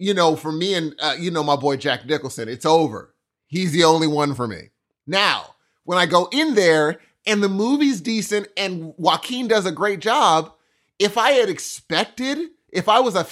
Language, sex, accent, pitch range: English, male, American, 145-210 Hz